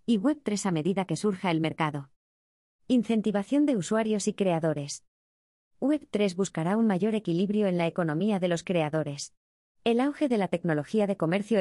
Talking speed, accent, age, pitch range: 160 wpm, Spanish, 20-39, 160-210 Hz